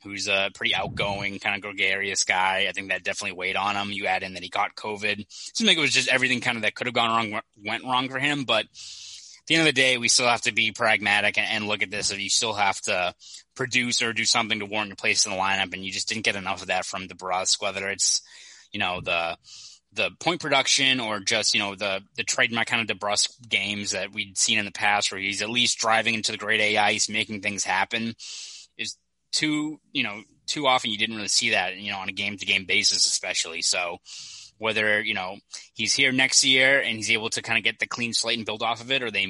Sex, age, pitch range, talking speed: male, 20-39, 100-120 Hz, 250 wpm